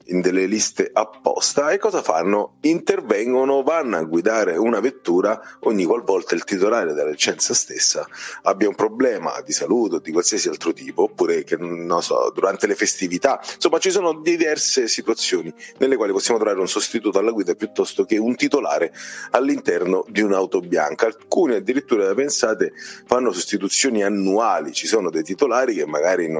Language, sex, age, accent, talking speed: Italian, male, 40-59, native, 155 wpm